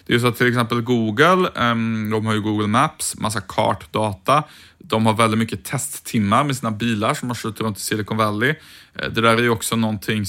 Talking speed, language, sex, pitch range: 205 wpm, Swedish, male, 110-125 Hz